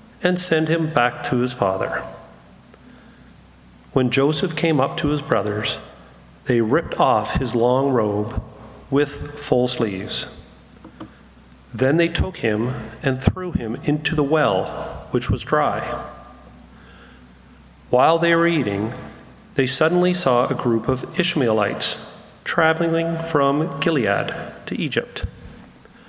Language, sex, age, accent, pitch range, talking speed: English, male, 40-59, American, 115-165 Hz, 120 wpm